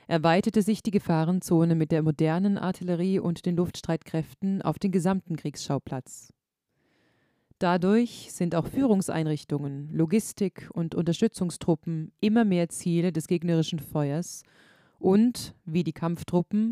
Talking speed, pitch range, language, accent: 115 wpm, 160-190 Hz, German, German